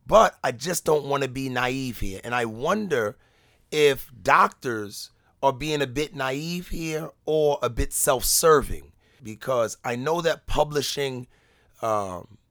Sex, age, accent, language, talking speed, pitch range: male, 40-59, American, English, 145 wpm, 115-155 Hz